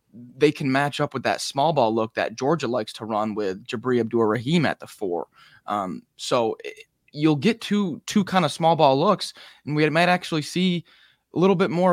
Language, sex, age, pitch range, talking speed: English, male, 20-39, 110-140 Hz, 205 wpm